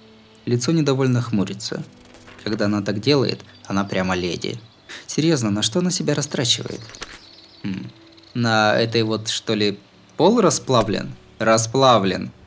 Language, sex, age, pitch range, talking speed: Russian, male, 20-39, 110-145 Hz, 120 wpm